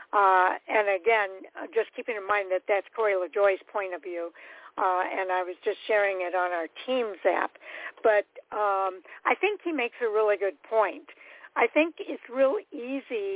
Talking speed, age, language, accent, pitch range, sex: 180 wpm, 60-79, English, American, 195-235 Hz, female